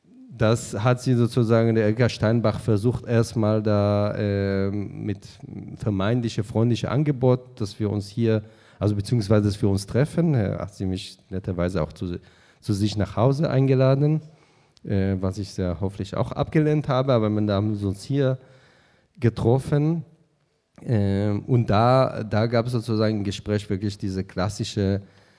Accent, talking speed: German, 150 wpm